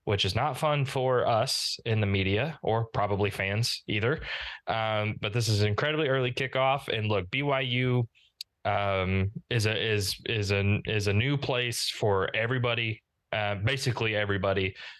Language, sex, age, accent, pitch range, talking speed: English, male, 20-39, American, 100-125 Hz, 155 wpm